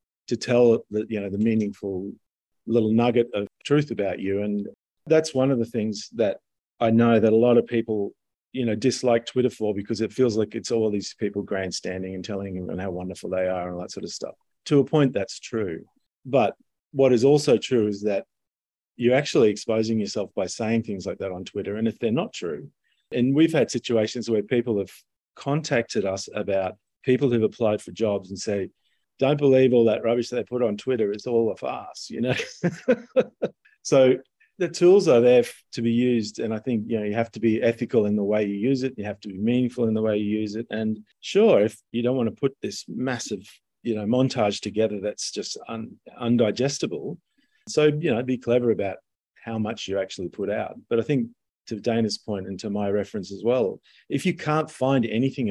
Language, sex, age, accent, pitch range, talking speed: English, male, 40-59, Australian, 105-125 Hz, 215 wpm